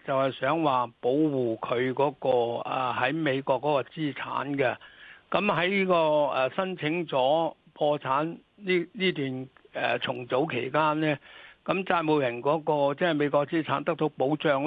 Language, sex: Chinese, male